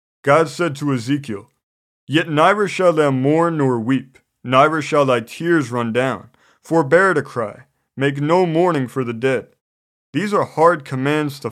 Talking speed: 160 wpm